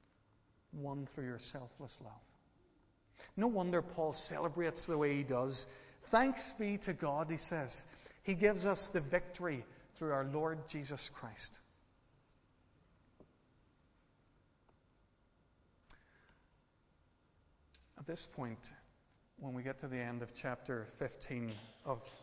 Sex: male